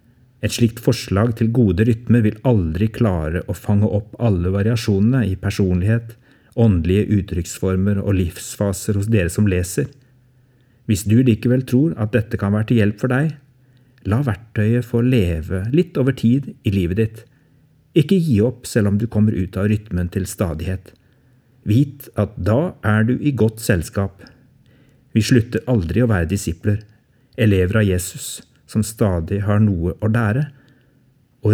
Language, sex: English, male